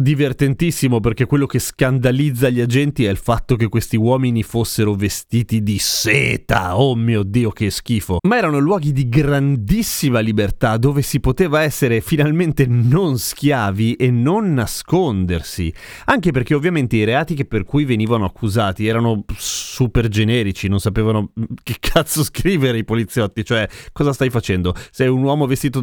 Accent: native